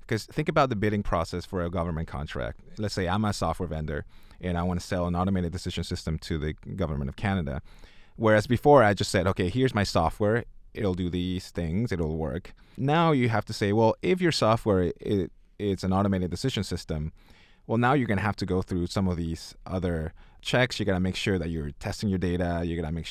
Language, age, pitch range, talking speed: English, 20-39, 90-110 Hz, 225 wpm